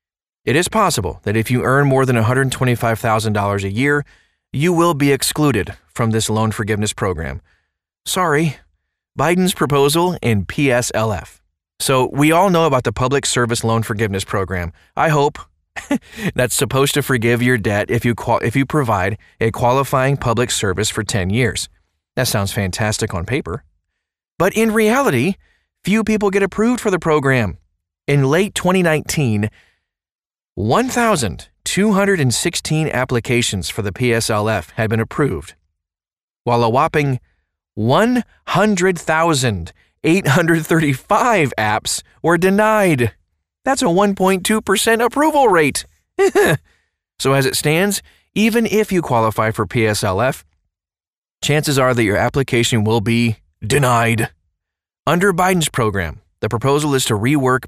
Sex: male